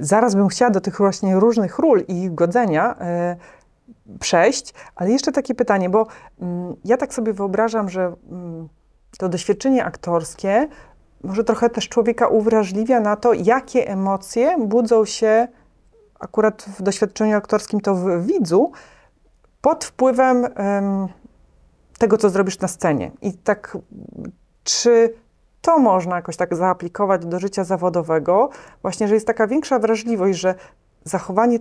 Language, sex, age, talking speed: Polish, female, 40-59, 140 wpm